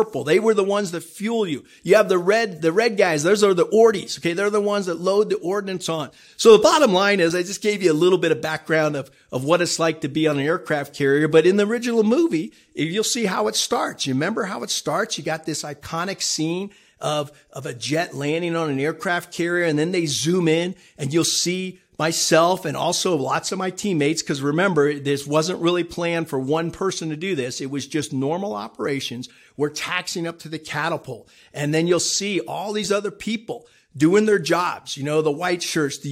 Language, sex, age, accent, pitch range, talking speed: English, male, 50-69, American, 150-190 Hz, 225 wpm